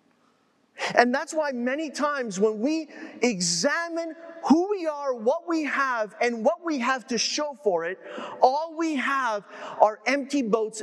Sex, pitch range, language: male, 200-280 Hz, English